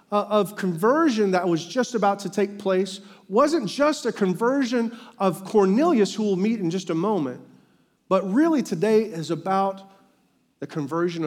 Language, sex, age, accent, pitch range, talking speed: English, male, 40-59, American, 195-280 Hz, 155 wpm